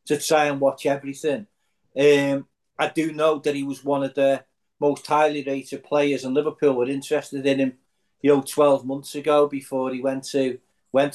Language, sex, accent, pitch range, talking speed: English, male, British, 135-155 Hz, 190 wpm